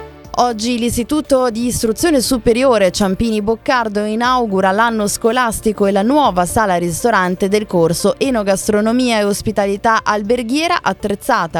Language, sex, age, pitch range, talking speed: Italian, female, 20-39, 180-245 Hz, 115 wpm